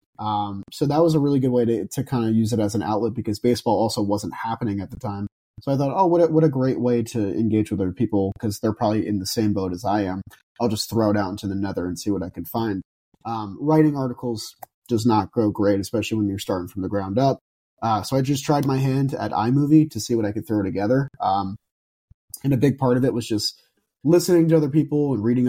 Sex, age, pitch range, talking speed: male, 30-49, 105-125 Hz, 260 wpm